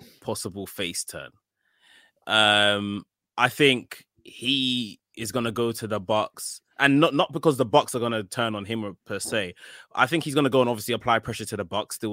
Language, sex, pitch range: English, male, 105-130 Hz